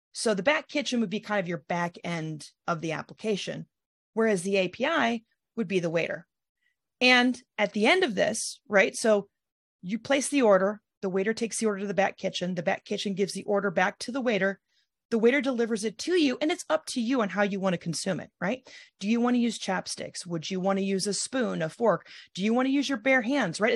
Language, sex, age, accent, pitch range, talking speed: English, female, 30-49, American, 180-240 Hz, 240 wpm